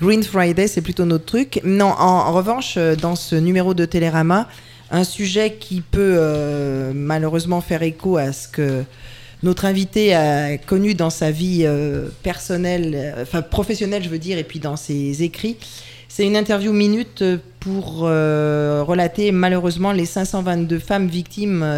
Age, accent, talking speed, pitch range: 20-39, French, 155 wpm, 145-185 Hz